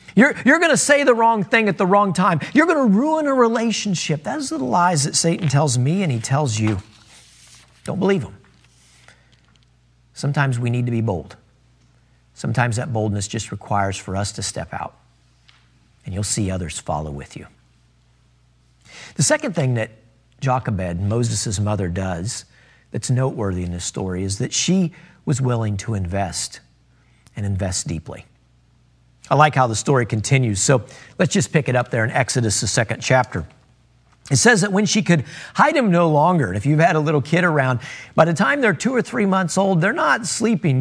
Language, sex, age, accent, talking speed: English, male, 50-69, American, 185 wpm